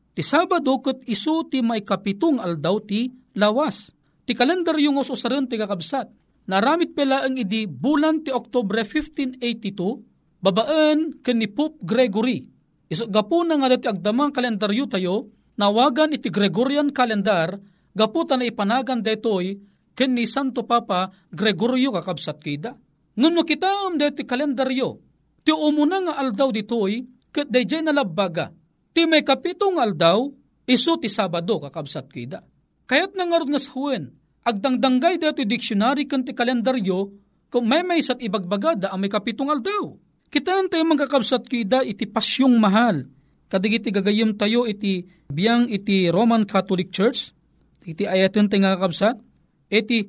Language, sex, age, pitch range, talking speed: Filipino, male, 40-59, 200-275 Hz, 135 wpm